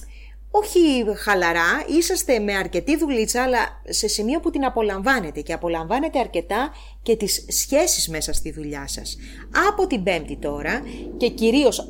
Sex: female